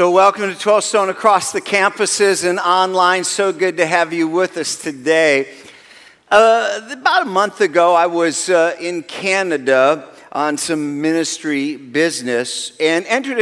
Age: 50-69